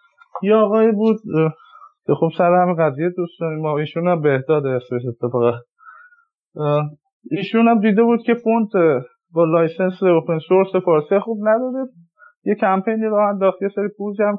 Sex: male